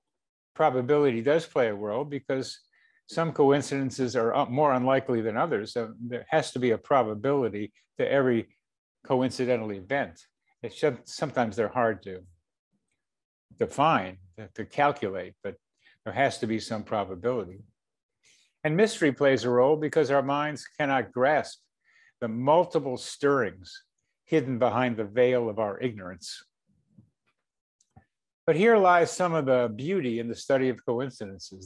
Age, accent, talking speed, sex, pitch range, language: 50-69, American, 135 wpm, male, 115-150 Hz, English